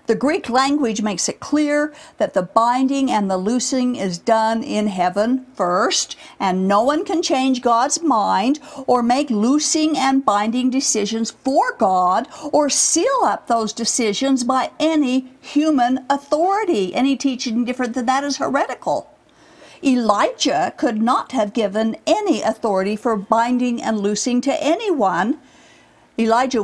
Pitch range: 225-290 Hz